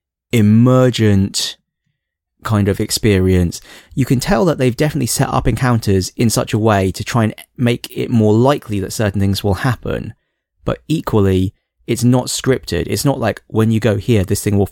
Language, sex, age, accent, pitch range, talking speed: English, male, 20-39, British, 100-125 Hz, 180 wpm